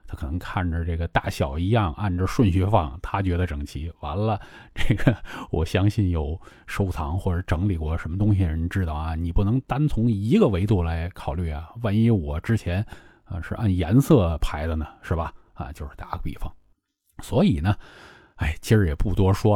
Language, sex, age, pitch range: Chinese, male, 20-39, 85-105 Hz